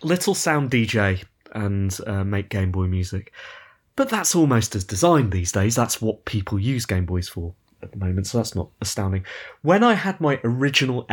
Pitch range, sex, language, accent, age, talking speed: 100-125 Hz, male, English, British, 30-49, 190 wpm